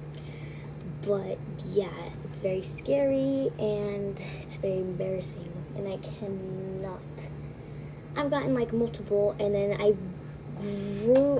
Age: 10-29